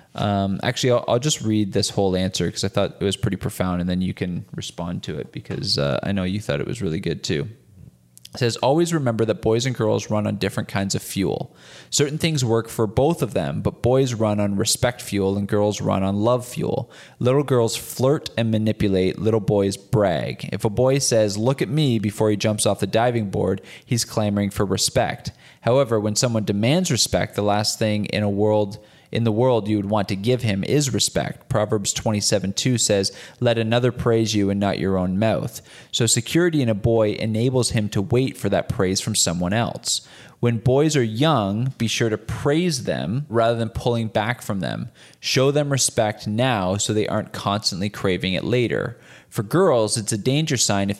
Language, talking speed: English, 205 wpm